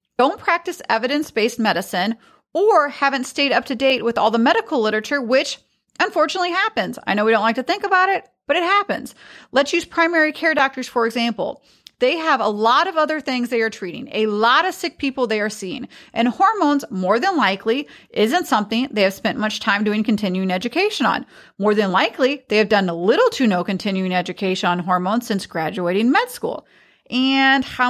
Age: 30-49